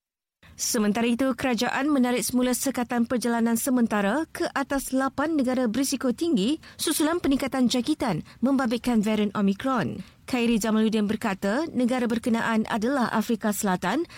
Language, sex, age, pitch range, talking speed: Malay, female, 20-39, 220-265 Hz, 120 wpm